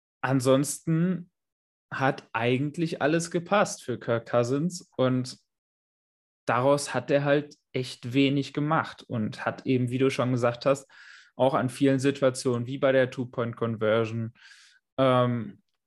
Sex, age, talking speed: male, 20-39, 120 wpm